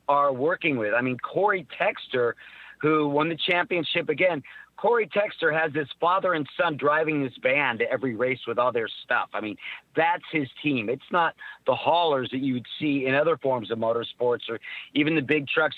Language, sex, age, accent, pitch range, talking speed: English, male, 50-69, American, 140-165 Hz, 195 wpm